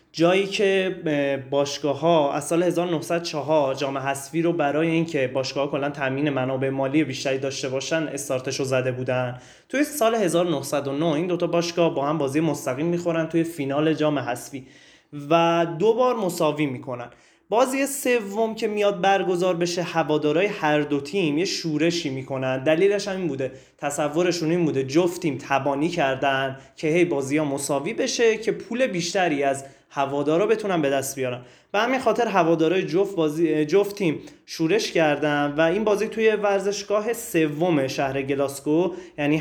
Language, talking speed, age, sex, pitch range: Persian, 145 wpm, 20-39, male, 140-180 Hz